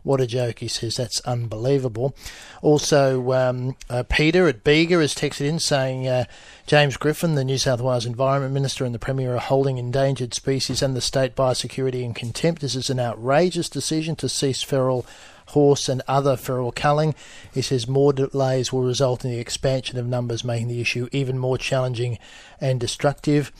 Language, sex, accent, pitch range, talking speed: English, male, Australian, 125-140 Hz, 180 wpm